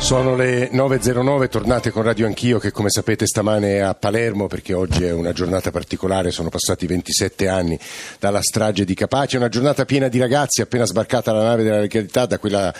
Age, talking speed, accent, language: 50-69, 195 wpm, native, Italian